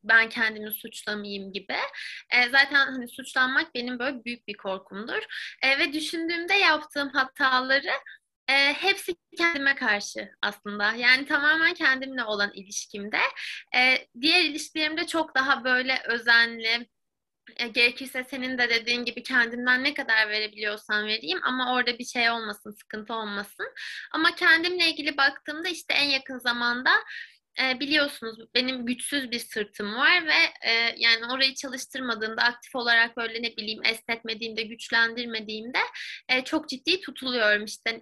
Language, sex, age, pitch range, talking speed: Turkish, female, 20-39, 225-285 Hz, 135 wpm